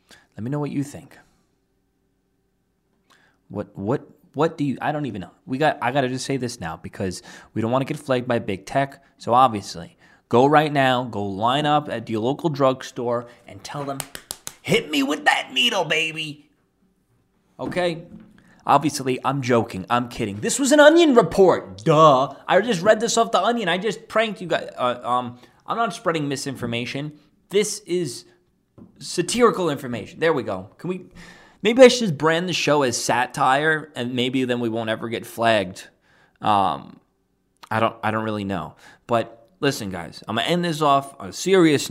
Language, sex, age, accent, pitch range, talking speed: English, male, 20-39, American, 120-175 Hz, 185 wpm